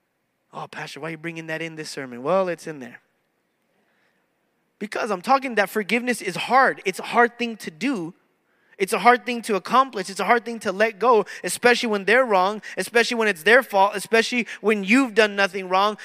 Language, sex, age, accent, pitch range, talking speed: English, male, 20-39, American, 190-245 Hz, 205 wpm